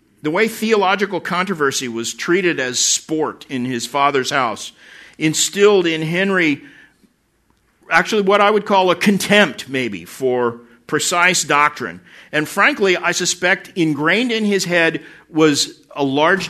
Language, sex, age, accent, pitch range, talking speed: English, male, 50-69, American, 145-195 Hz, 135 wpm